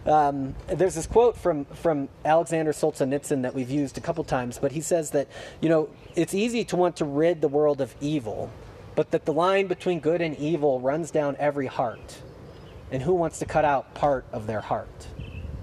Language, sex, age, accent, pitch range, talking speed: English, male, 30-49, American, 120-155 Hz, 200 wpm